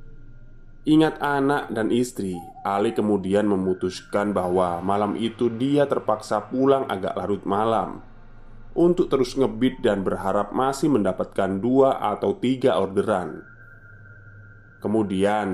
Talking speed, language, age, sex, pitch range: 110 wpm, Indonesian, 20-39, male, 100-130 Hz